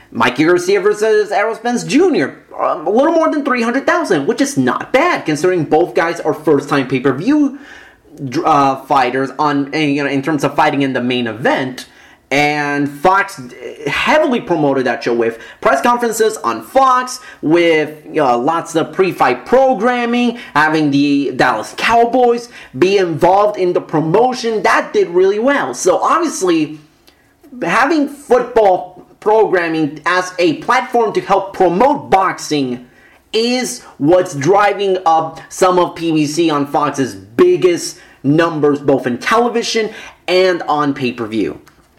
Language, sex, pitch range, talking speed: English, male, 155-255 Hz, 135 wpm